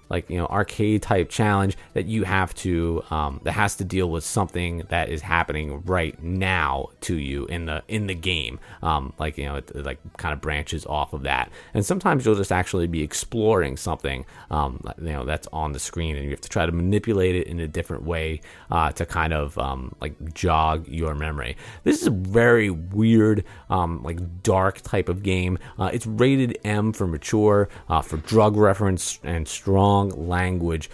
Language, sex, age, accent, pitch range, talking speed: English, male, 30-49, American, 85-110 Hz, 195 wpm